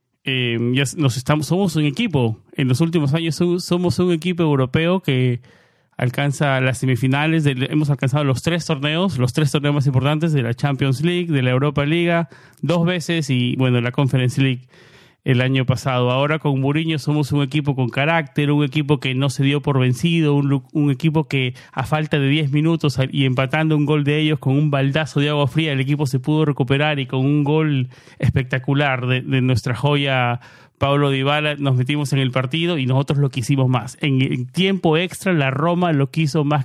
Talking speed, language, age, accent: 195 wpm, Spanish, 30-49, Argentinian